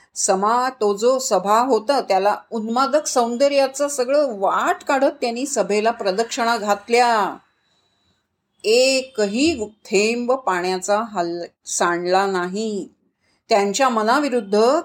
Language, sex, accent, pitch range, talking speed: Marathi, female, native, 195-265 Hz, 90 wpm